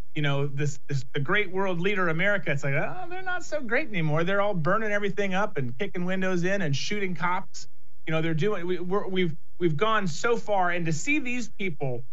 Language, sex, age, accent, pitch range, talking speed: English, male, 30-49, American, 150-195 Hz, 220 wpm